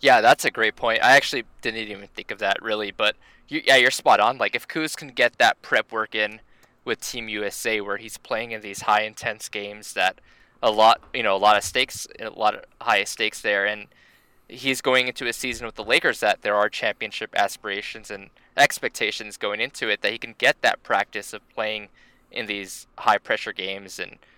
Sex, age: male, 10-29